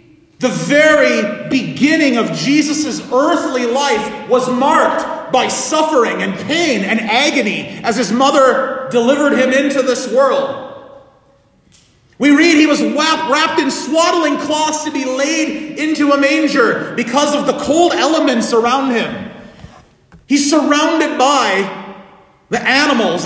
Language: English